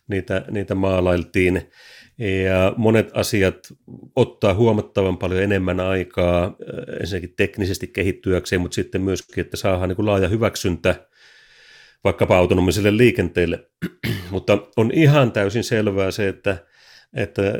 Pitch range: 95-115 Hz